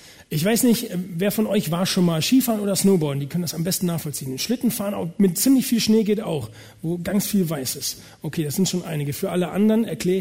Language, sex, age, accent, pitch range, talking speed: German, male, 40-59, German, 165-220 Hz, 230 wpm